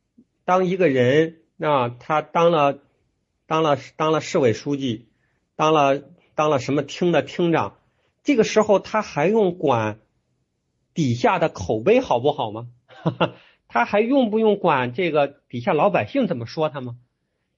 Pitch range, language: 125-190 Hz, Chinese